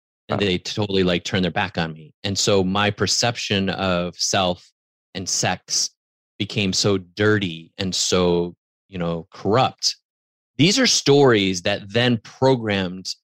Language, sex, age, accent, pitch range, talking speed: English, male, 30-49, American, 95-115 Hz, 140 wpm